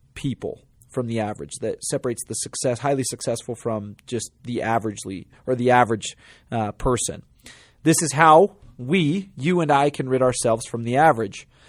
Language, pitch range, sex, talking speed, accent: English, 115-150 Hz, male, 165 wpm, American